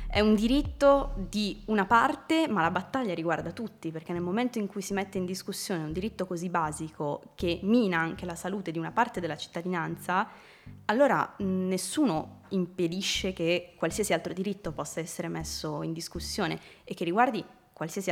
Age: 20-39